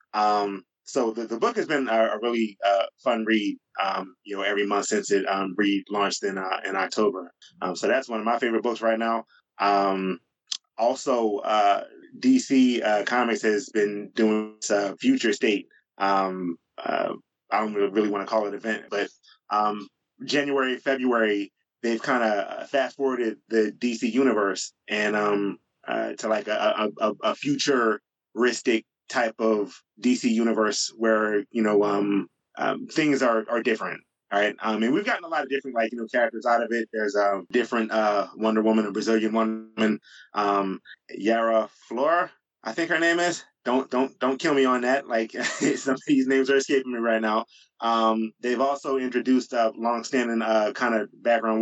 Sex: male